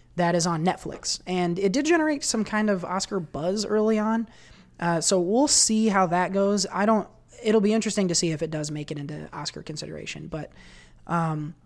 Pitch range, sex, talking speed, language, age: 170-200 Hz, male, 195 wpm, English, 20-39